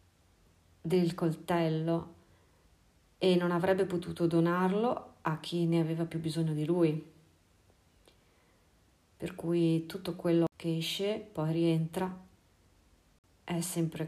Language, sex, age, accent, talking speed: Italian, female, 40-59, native, 105 wpm